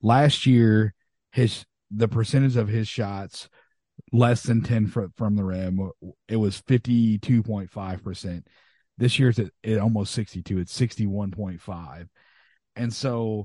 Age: 30-49